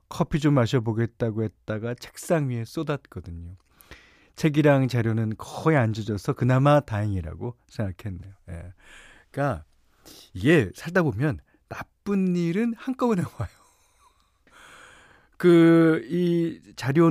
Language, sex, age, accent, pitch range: Korean, male, 40-59, native, 100-155 Hz